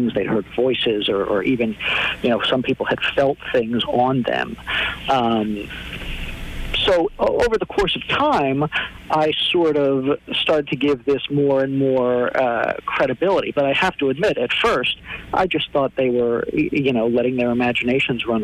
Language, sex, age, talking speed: English, male, 50-69, 170 wpm